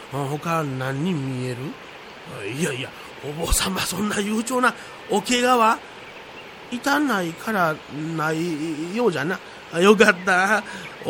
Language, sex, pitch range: Japanese, male, 135-205 Hz